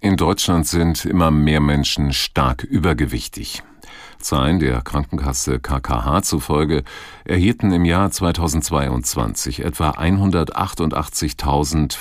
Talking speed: 90 wpm